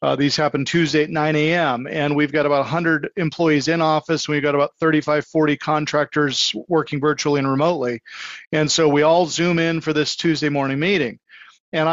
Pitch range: 150-175 Hz